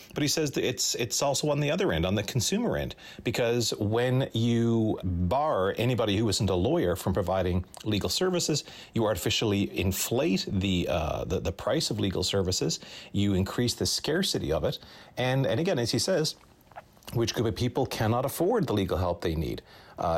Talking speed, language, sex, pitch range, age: 185 wpm, English, male, 100-140 Hz, 40-59